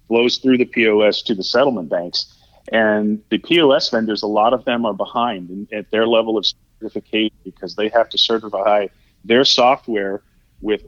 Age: 30-49